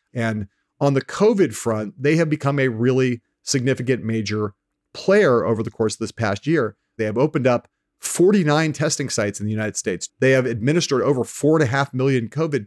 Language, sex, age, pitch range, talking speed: English, male, 40-59, 105-130 Hz, 195 wpm